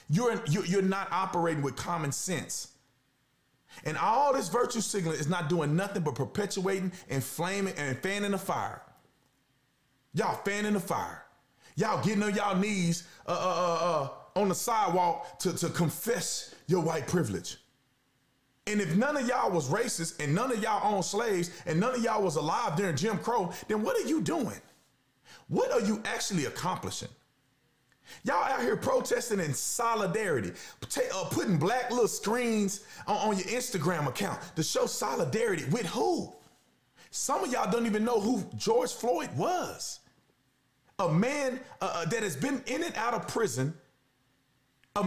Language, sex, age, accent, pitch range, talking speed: English, male, 30-49, American, 155-220 Hz, 160 wpm